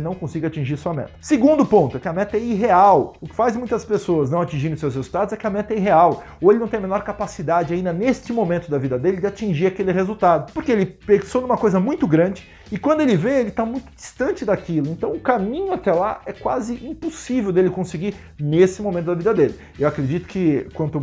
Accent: Brazilian